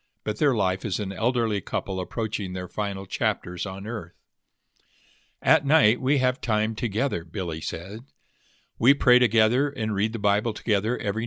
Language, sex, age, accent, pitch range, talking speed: English, male, 50-69, American, 95-125 Hz, 160 wpm